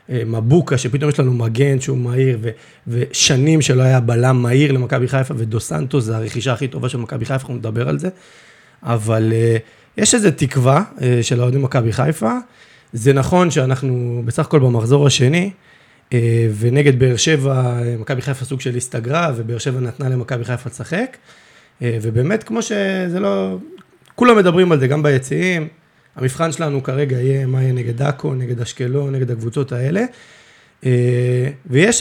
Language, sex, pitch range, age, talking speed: Hebrew, male, 125-155 Hz, 30-49, 150 wpm